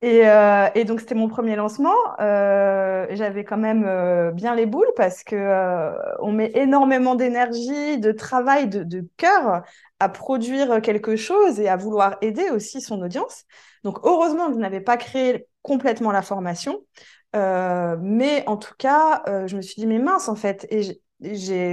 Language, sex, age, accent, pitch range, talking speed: French, female, 20-39, French, 200-255 Hz, 180 wpm